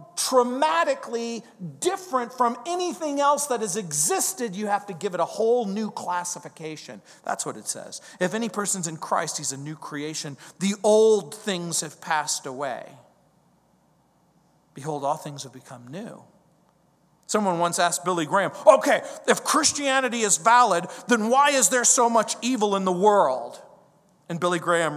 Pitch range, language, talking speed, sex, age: 165-230 Hz, English, 155 wpm, male, 40-59